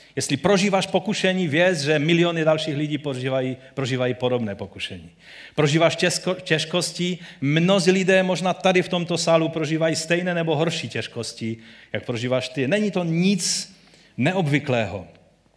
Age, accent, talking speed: 40-59, native, 125 wpm